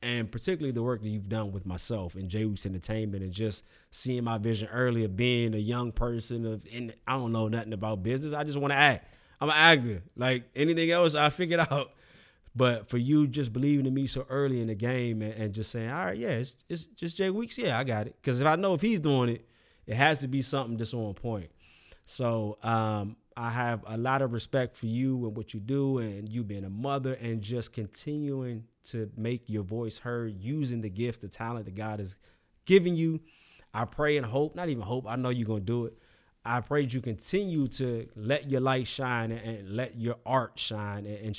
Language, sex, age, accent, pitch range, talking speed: English, male, 20-39, American, 110-140 Hz, 225 wpm